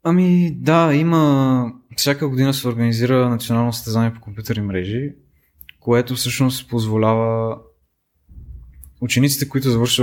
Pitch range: 105-130 Hz